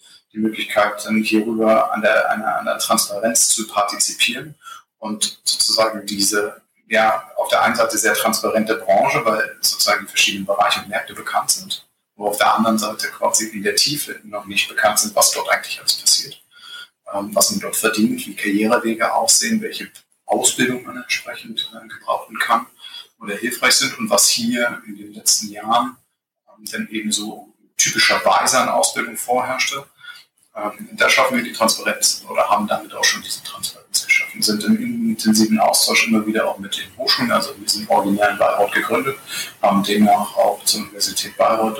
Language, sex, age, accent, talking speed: German, male, 30-49, German, 160 wpm